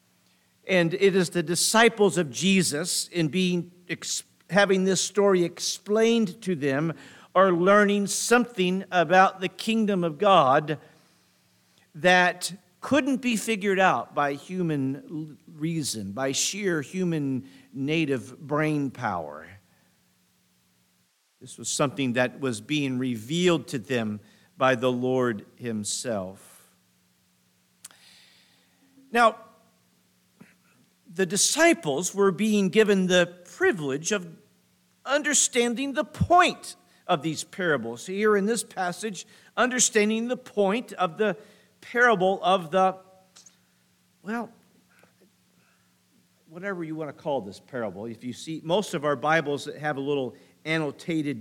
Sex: male